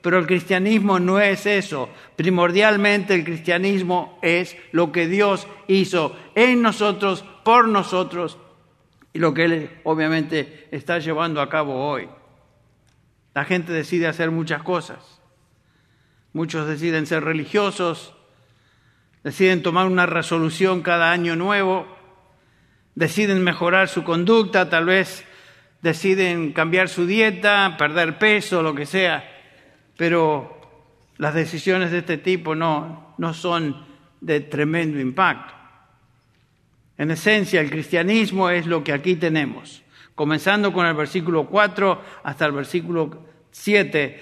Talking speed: 120 wpm